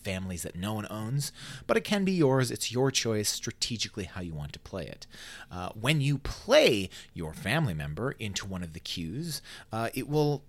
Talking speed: 200 wpm